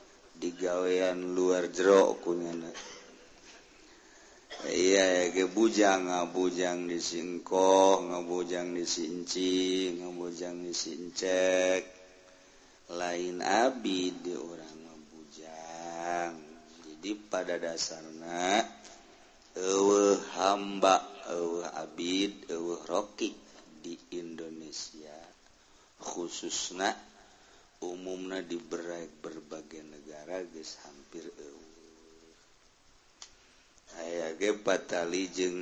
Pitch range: 85-95 Hz